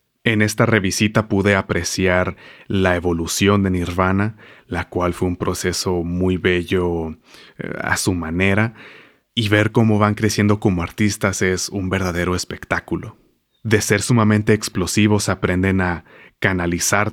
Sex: male